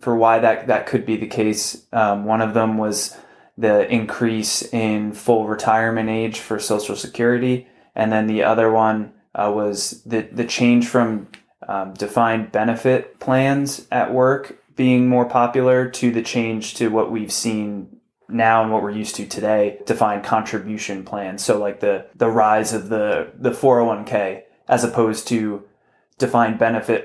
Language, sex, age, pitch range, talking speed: English, male, 20-39, 110-120 Hz, 160 wpm